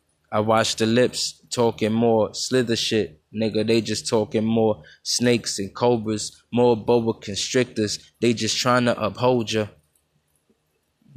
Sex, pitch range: male, 110-130 Hz